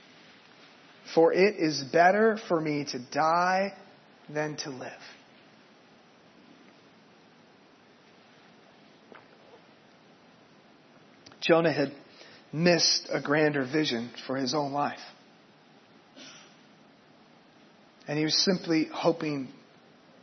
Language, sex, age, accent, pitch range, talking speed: English, male, 30-49, American, 155-230 Hz, 75 wpm